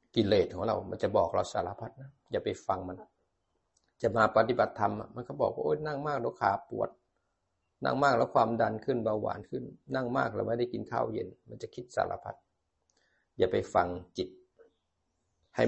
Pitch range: 90-115 Hz